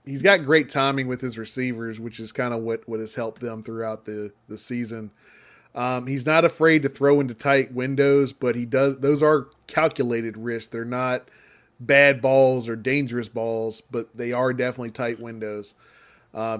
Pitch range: 115-135 Hz